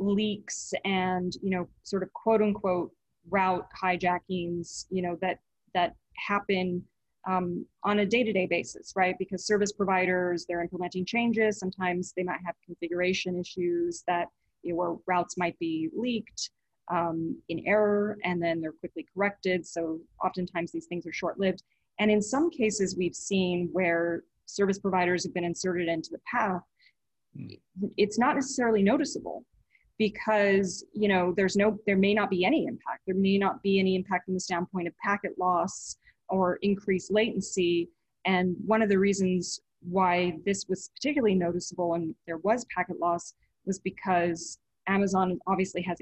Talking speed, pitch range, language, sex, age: 155 wpm, 175-200 Hz, English, female, 20-39